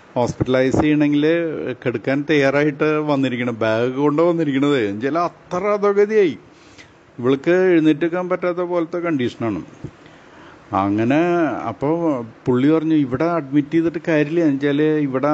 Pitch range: 115-155 Hz